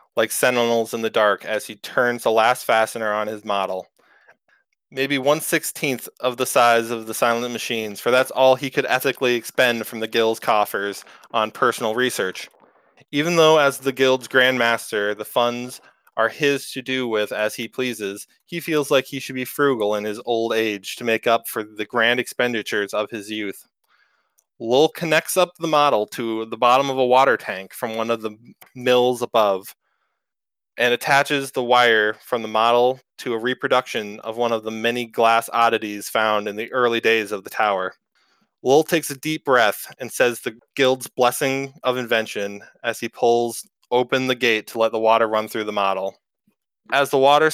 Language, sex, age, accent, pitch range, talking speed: English, male, 20-39, American, 110-130 Hz, 185 wpm